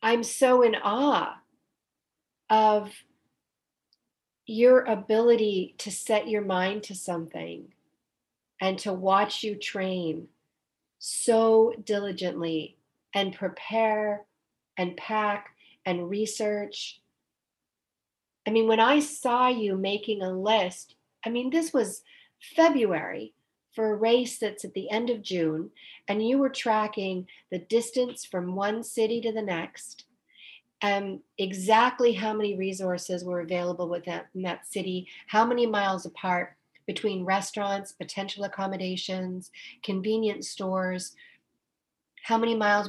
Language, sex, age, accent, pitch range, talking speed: English, female, 40-59, American, 185-225 Hz, 120 wpm